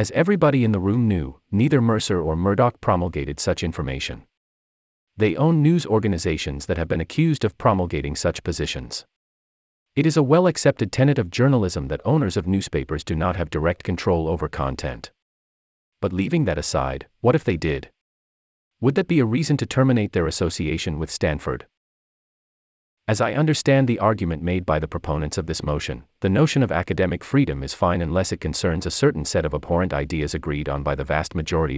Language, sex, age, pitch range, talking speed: English, male, 40-59, 75-105 Hz, 180 wpm